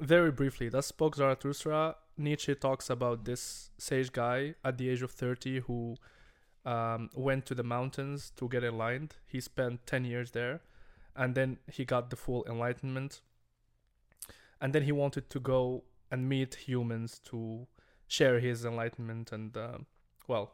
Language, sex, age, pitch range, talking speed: English, male, 20-39, 115-140 Hz, 155 wpm